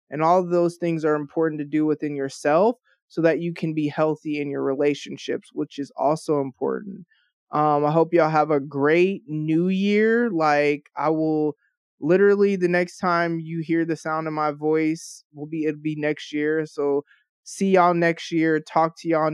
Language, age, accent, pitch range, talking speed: English, 20-39, American, 150-185 Hz, 190 wpm